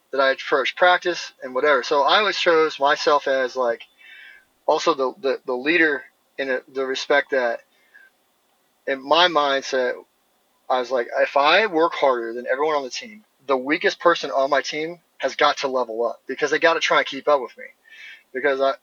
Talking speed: 185 wpm